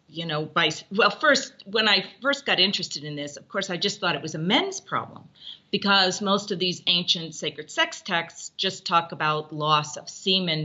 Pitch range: 170-240 Hz